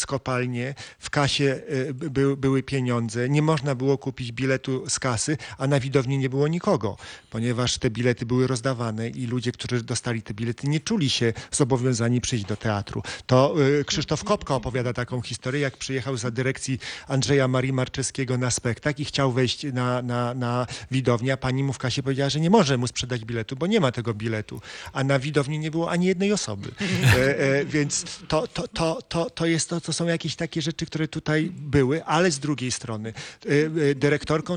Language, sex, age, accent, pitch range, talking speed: Polish, male, 40-59, native, 125-145 Hz, 195 wpm